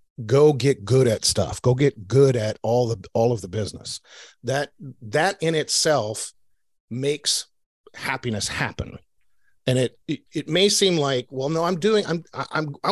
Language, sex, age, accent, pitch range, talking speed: English, male, 50-69, American, 120-165 Hz, 165 wpm